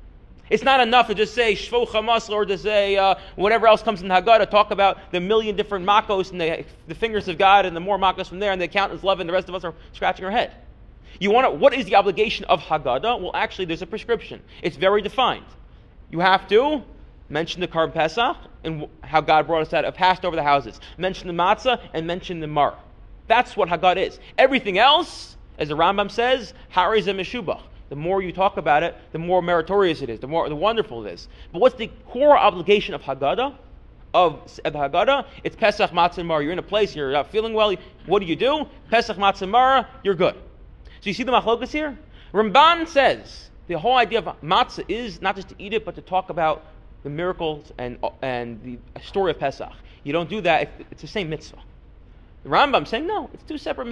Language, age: English, 30-49